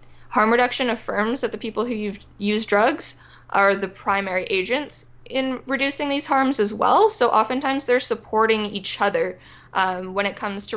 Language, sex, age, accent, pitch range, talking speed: English, female, 10-29, American, 195-250 Hz, 165 wpm